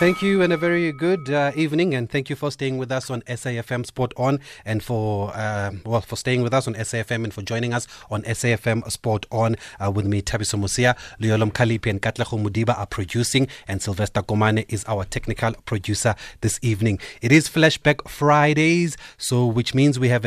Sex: male